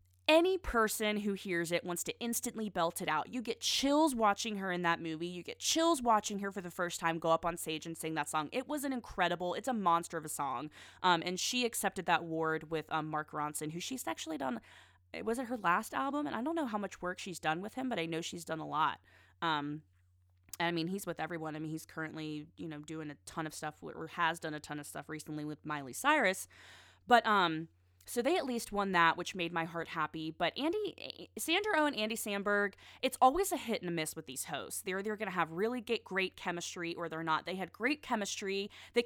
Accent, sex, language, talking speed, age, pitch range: American, female, English, 245 wpm, 20-39, 160-230 Hz